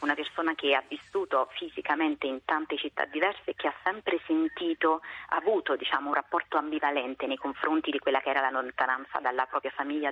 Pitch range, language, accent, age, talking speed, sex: 140-175 Hz, Italian, native, 30-49, 190 wpm, female